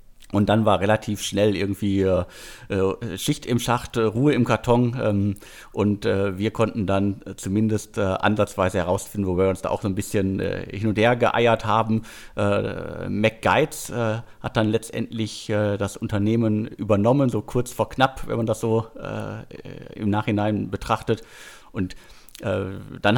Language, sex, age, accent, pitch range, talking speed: German, male, 50-69, German, 100-115 Hz, 135 wpm